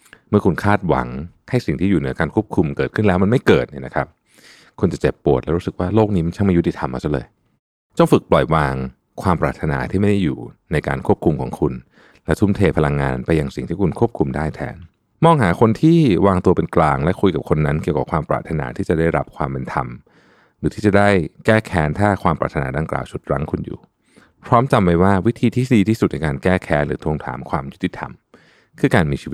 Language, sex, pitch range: Thai, male, 70-105 Hz